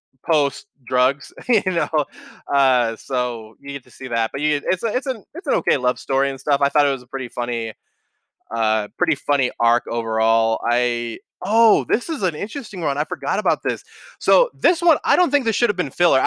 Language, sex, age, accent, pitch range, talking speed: English, male, 20-39, American, 125-170 Hz, 215 wpm